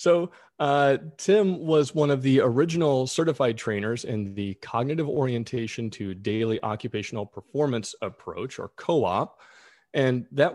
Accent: American